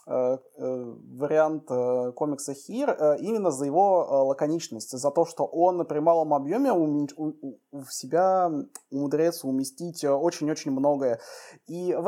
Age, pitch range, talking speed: 20-39, 150-200 Hz, 110 wpm